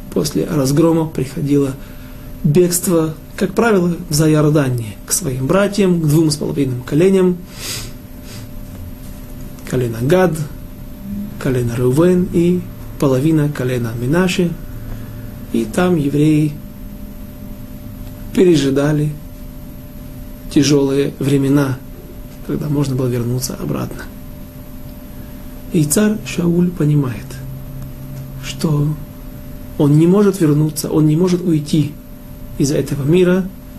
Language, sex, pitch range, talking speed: Russian, male, 125-165 Hz, 90 wpm